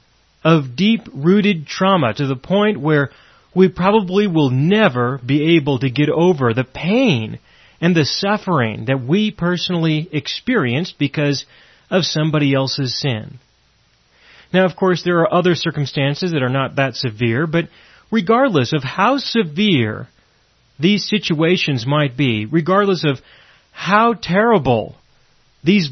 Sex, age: male, 30-49